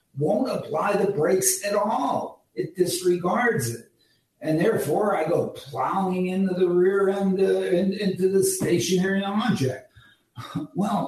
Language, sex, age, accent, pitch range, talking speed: English, male, 60-79, American, 140-180 Hz, 135 wpm